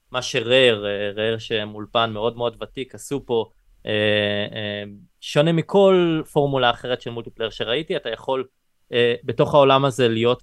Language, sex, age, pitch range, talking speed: Hebrew, male, 20-39, 115-140 Hz, 130 wpm